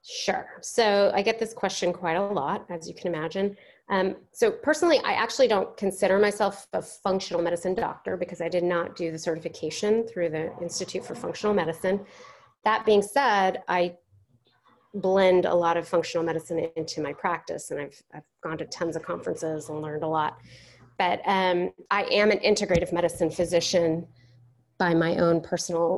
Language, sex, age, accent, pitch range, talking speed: English, female, 30-49, American, 165-205 Hz, 175 wpm